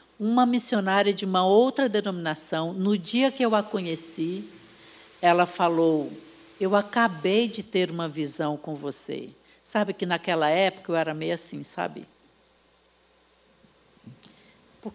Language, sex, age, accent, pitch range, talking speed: Portuguese, female, 60-79, Brazilian, 170-225 Hz, 130 wpm